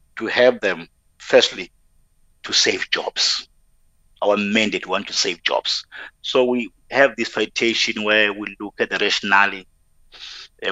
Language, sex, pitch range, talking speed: English, male, 95-120 Hz, 140 wpm